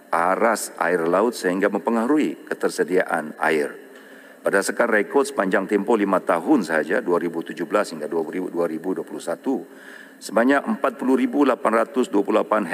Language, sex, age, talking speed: English, male, 50-69, 90 wpm